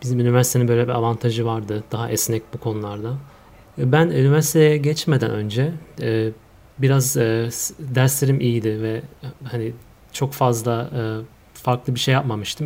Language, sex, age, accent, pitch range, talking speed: Turkish, male, 30-49, native, 115-135 Hz, 120 wpm